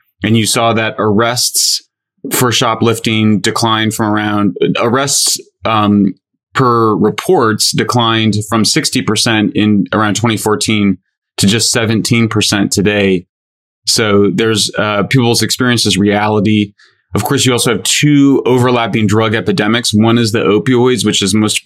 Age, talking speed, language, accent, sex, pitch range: 30-49, 130 wpm, English, American, male, 105-115 Hz